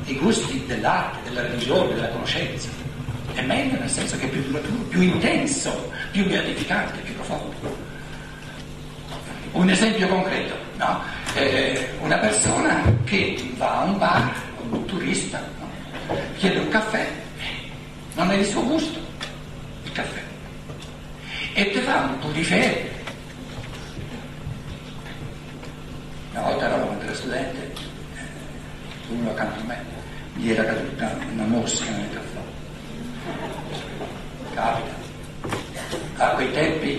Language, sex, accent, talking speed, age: Italian, male, native, 120 wpm, 60-79